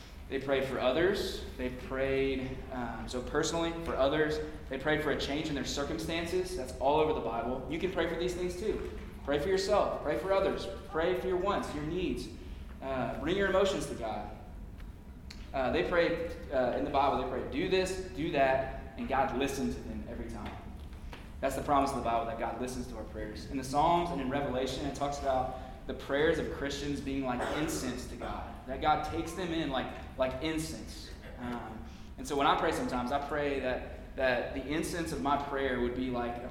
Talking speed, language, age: 210 wpm, English, 20-39